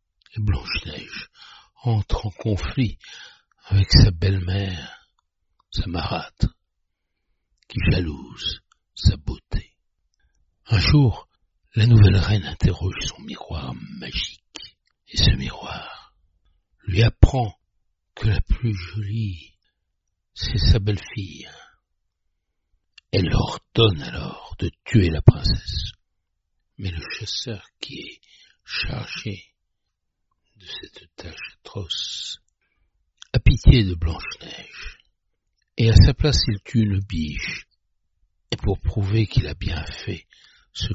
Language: French